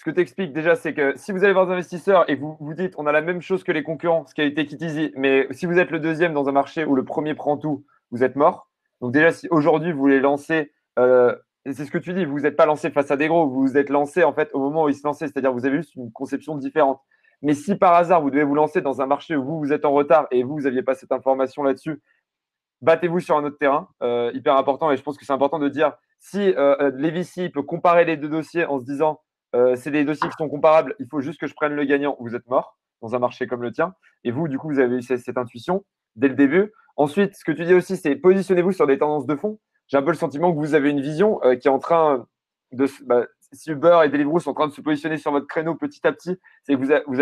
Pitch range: 140-165 Hz